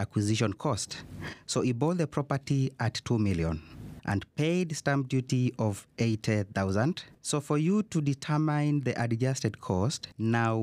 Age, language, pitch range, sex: 30-49, English, 110-145 Hz, male